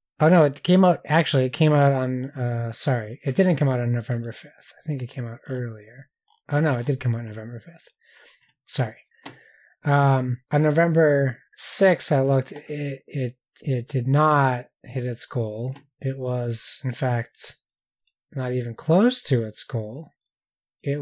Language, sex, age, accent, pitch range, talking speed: English, male, 20-39, American, 125-160 Hz, 170 wpm